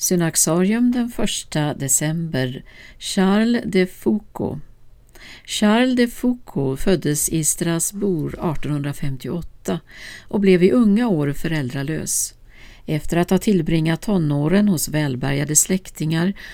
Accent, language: native, Swedish